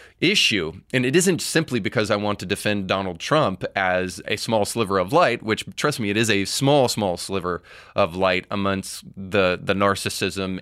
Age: 20-39